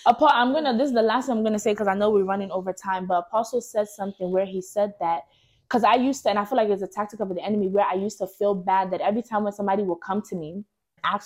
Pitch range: 175-205 Hz